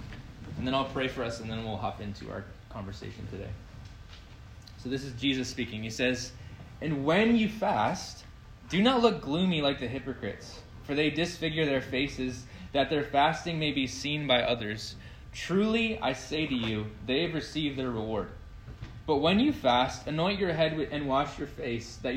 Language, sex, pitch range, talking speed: English, male, 110-140 Hz, 180 wpm